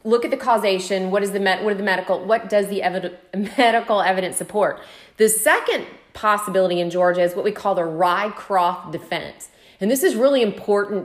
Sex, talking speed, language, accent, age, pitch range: female, 195 wpm, English, American, 30-49, 180-225 Hz